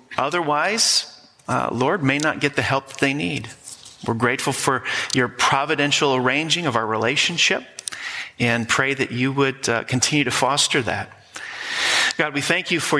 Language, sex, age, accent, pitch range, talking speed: English, male, 40-59, American, 110-140 Hz, 155 wpm